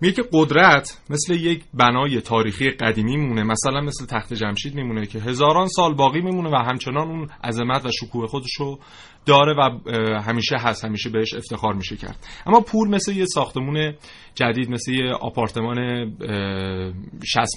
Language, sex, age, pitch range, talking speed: Persian, male, 30-49, 110-140 Hz, 155 wpm